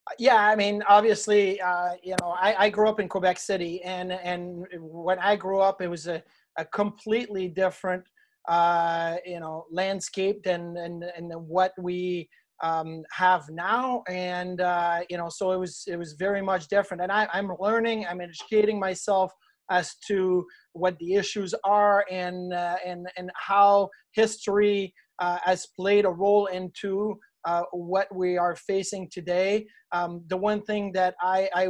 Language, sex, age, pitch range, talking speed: English, male, 30-49, 175-205 Hz, 165 wpm